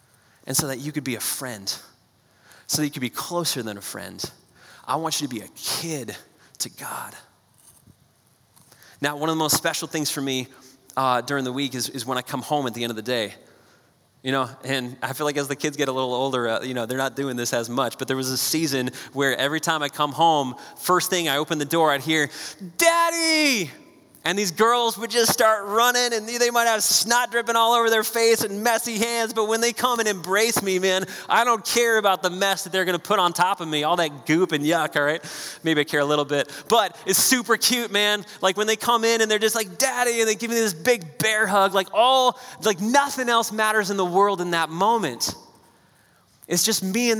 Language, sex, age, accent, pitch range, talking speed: English, male, 30-49, American, 140-220 Hz, 240 wpm